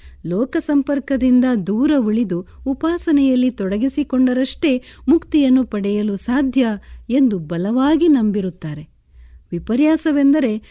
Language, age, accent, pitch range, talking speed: Kannada, 50-69, native, 205-290 Hz, 65 wpm